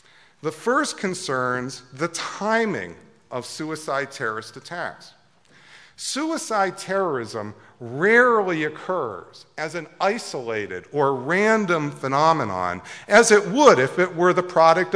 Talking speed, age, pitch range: 110 wpm, 50-69, 140-195 Hz